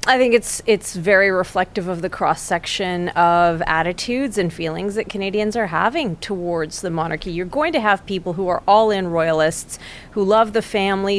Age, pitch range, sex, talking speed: 40-59, 175-215 Hz, female, 175 wpm